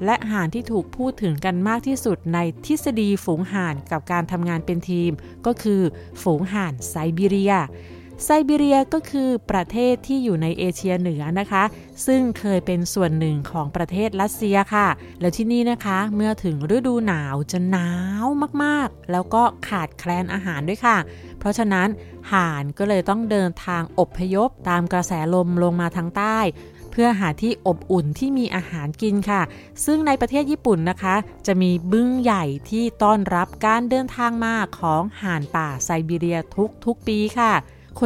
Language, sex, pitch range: Thai, female, 175-225 Hz